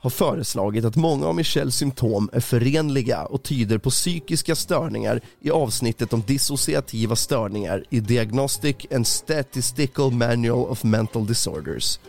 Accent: native